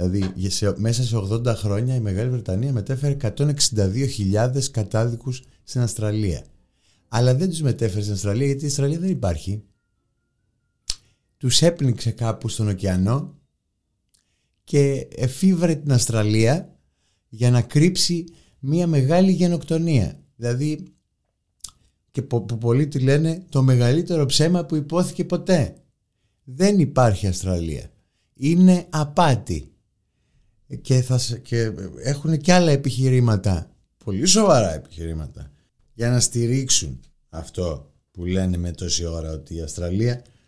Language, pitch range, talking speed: Greek, 95-135 Hz, 120 wpm